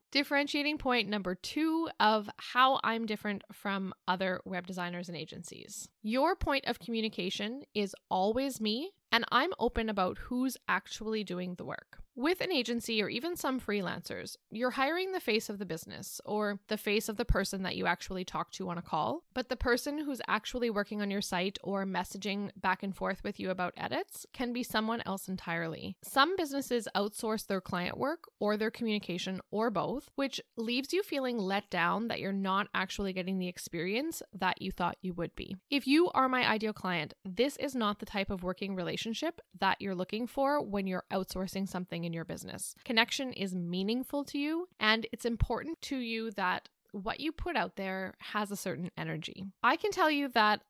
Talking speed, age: 190 wpm, 10-29